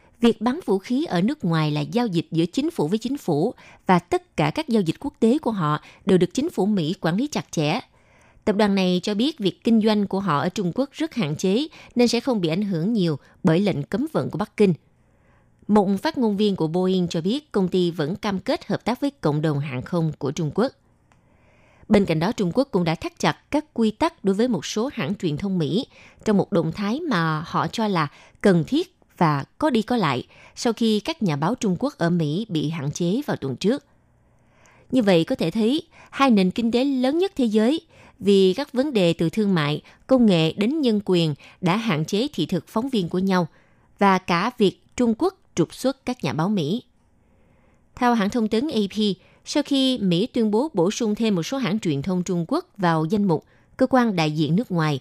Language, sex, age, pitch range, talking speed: Vietnamese, female, 20-39, 170-240 Hz, 230 wpm